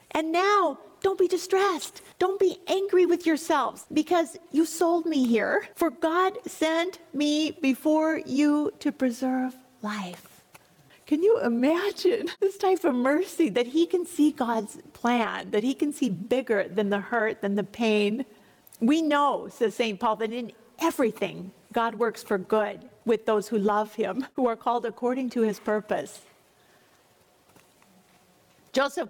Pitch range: 230-310 Hz